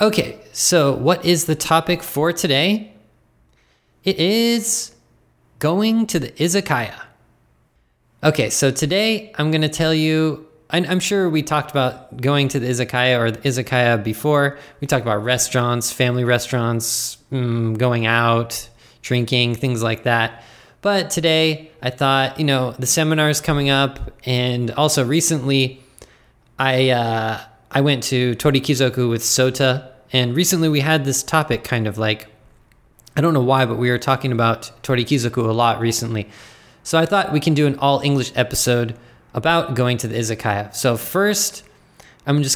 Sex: male